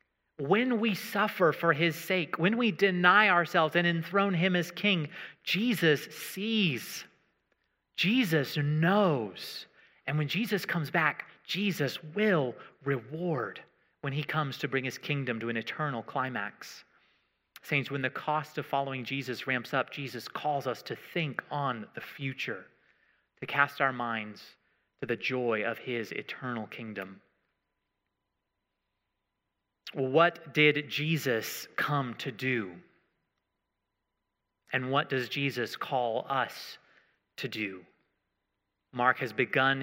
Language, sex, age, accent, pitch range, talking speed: English, male, 30-49, American, 110-160 Hz, 125 wpm